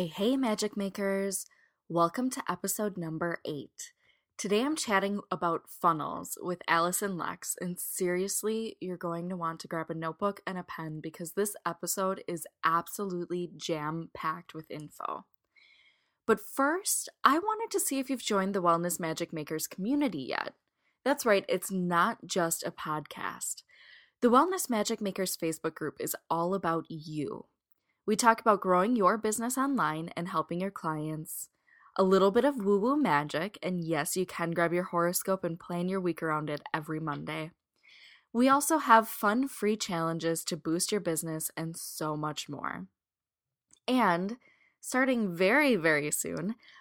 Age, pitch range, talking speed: 10-29, 165-215 Hz, 155 wpm